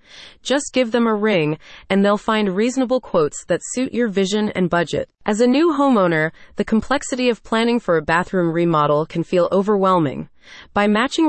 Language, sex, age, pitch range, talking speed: English, female, 30-49, 170-235 Hz, 175 wpm